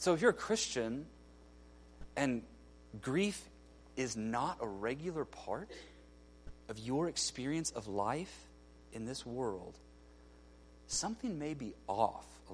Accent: American